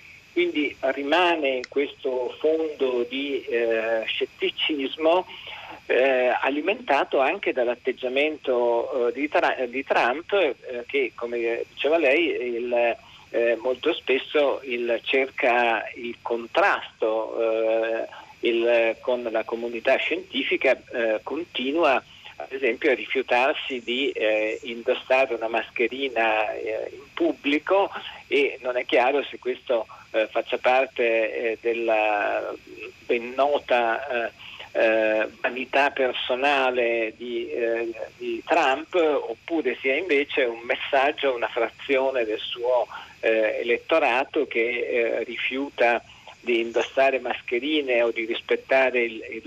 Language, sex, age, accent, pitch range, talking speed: Italian, male, 50-69, native, 115-170 Hz, 110 wpm